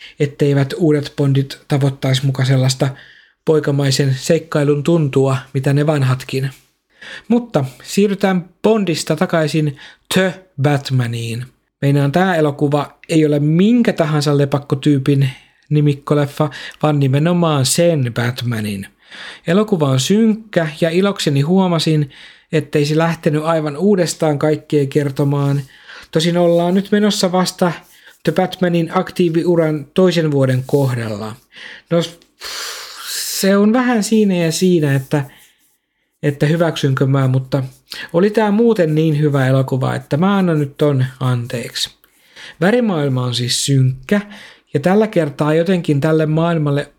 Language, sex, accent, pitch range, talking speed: Finnish, male, native, 140-170 Hz, 110 wpm